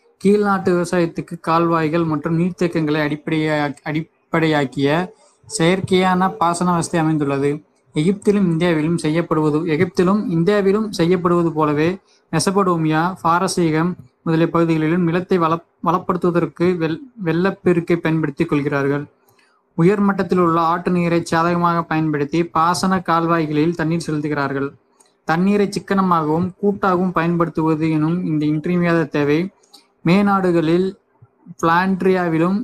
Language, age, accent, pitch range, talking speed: Tamil, 20-39, native, 160-185 Hz, 90 wpm